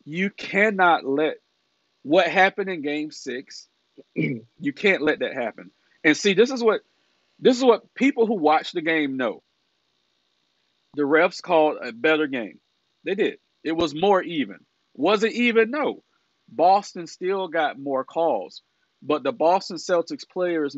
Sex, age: male, 40-59